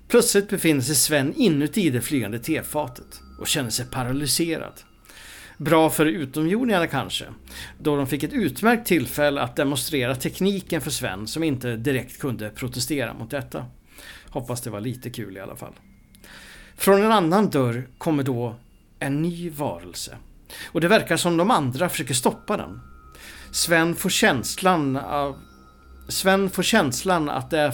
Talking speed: 150 wpm